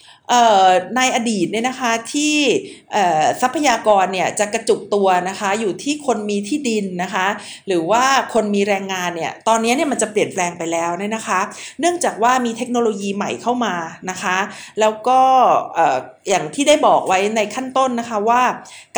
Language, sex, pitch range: Thai, female, 195-250 Hz